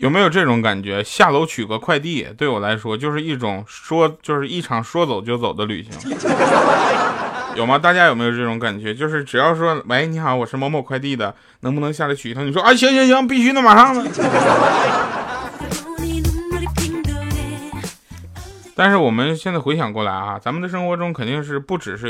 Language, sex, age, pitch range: Chinese, male, 20-39, 115-165 Hz